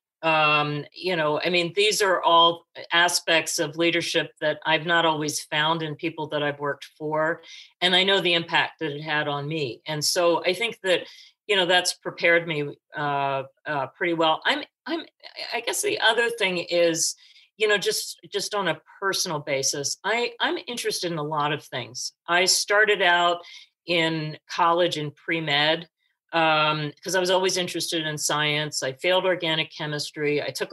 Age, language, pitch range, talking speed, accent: 50-69, English, 155-195 Hz, 180 wpm, American